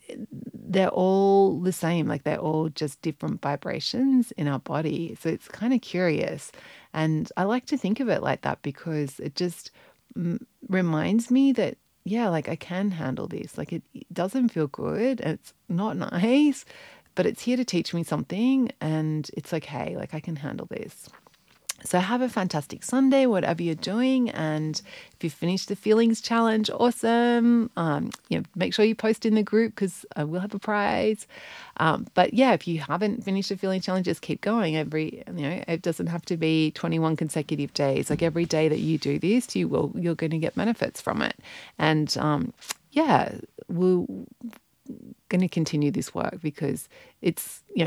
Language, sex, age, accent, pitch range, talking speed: English, female, 30-49, Australian, 155-225 Hz, 180 wpm